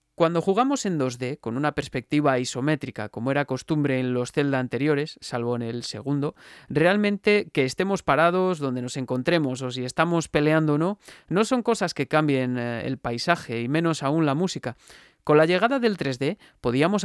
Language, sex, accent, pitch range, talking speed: Spanish, male, Spanish, 130-170 Hz, 175 wpm